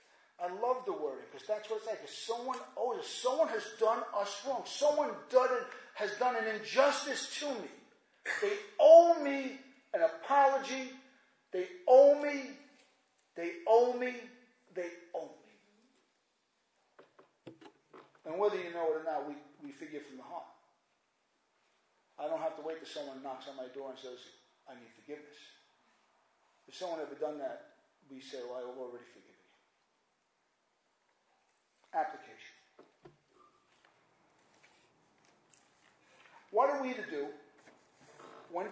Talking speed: 135 wpm